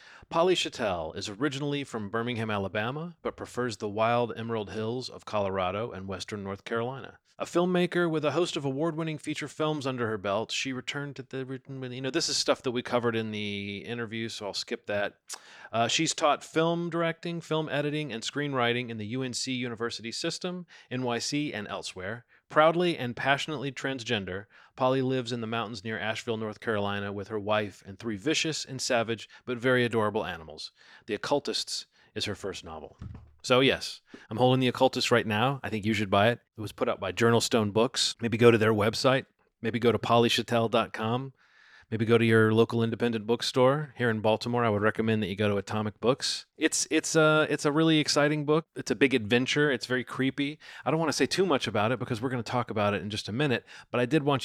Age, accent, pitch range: 30-49, American, 110-140 Hz